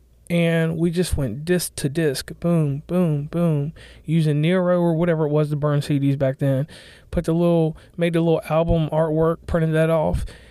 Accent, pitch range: American, 140-170 Hz